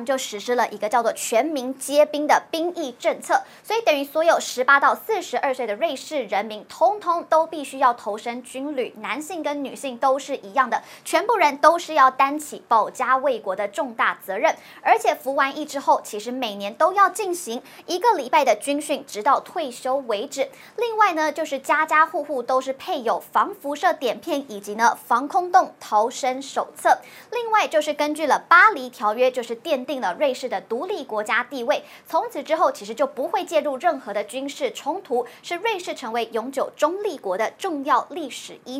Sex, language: male, Chinese